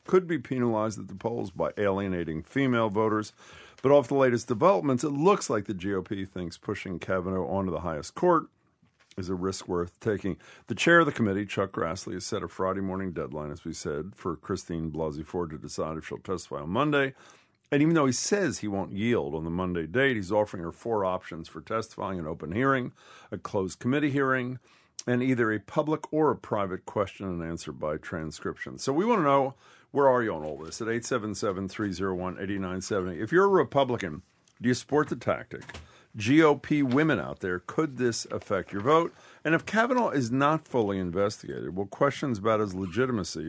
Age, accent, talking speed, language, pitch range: 50-69, American, 195 wpm, English, 95-135 Hz